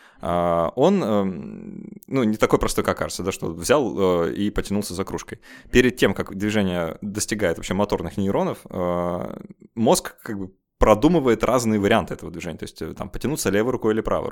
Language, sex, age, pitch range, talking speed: Russian, male, 20-39, 95-125 Hz, 160 wpm